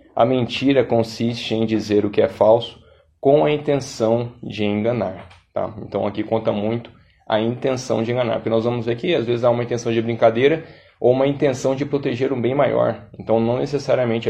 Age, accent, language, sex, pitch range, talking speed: 20-39, Brazilian, Portuguese, male, 105-125 Hz, 190 wpm